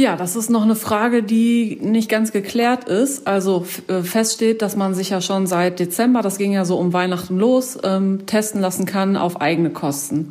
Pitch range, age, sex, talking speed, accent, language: 180-215 Hz, 30-49, female, 200 wpm, German, German